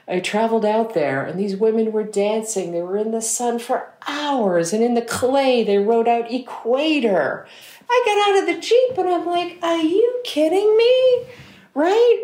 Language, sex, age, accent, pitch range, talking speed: English, female, 50-69, American, 170-245 Hz, 185 wpm